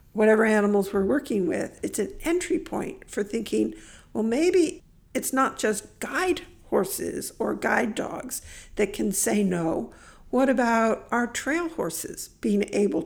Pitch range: 200-280 Hz